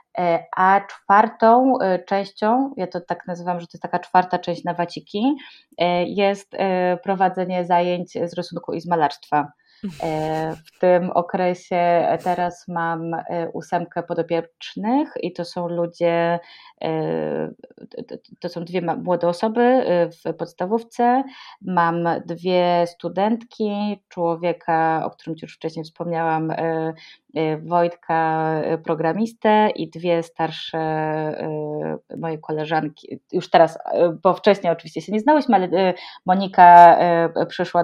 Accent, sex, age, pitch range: native, female, 20-39, 165-195 Hz